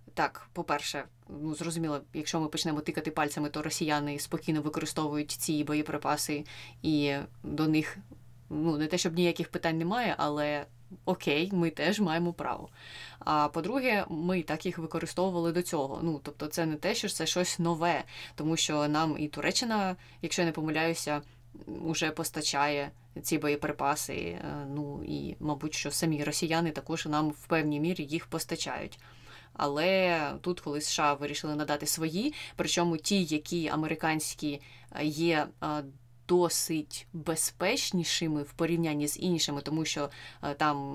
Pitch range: 150-170 Hz